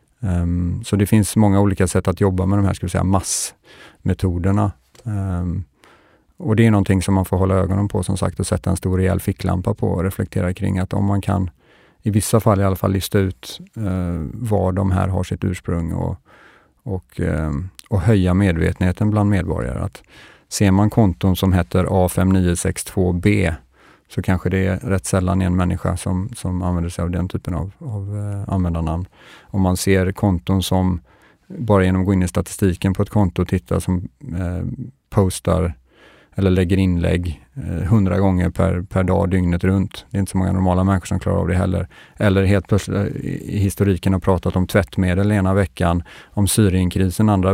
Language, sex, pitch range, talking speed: Swedish, male, 90-100 Hz, 190 wpm